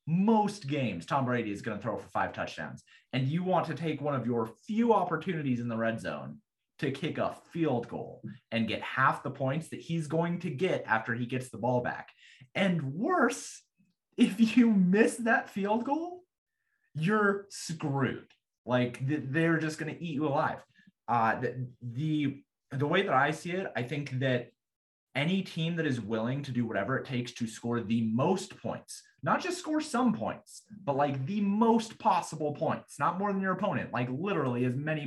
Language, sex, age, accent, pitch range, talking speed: English, male, 30-49, American, 120-175 Hz, 190 wpm